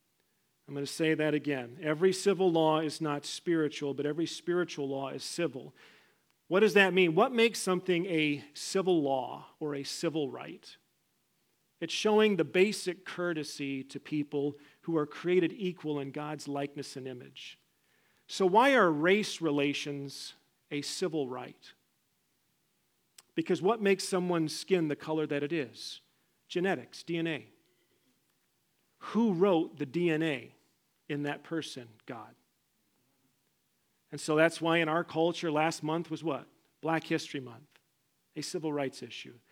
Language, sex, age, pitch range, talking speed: English, male, 40-59, 145-180 Hz, 145 wpm